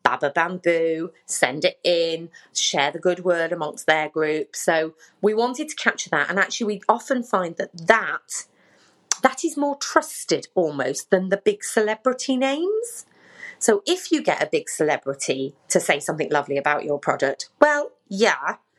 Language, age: English, 30-49